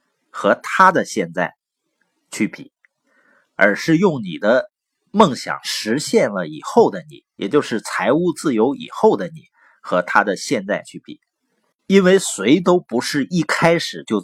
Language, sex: Chinese, male